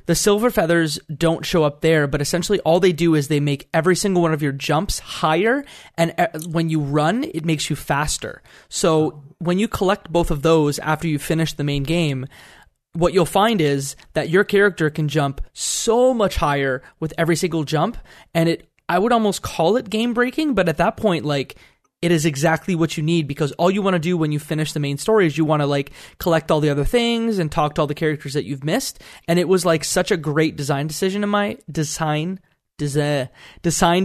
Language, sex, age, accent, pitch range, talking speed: English, male, 20-39, American, 150-180 Hz, 215 wpm